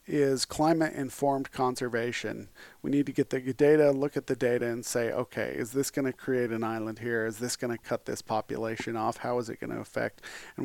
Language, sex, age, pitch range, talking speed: English, male, 40-59, 115-130 Hz, 210 wpm